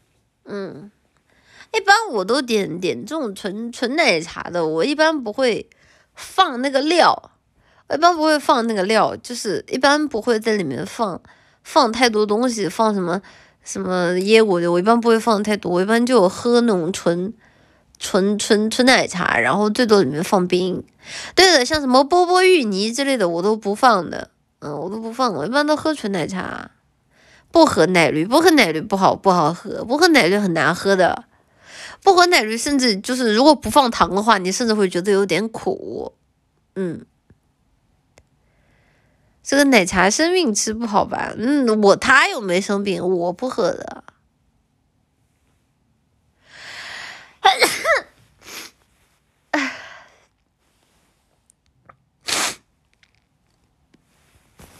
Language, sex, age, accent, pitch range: Chinese, female, 20-39, native, 190-280 Hz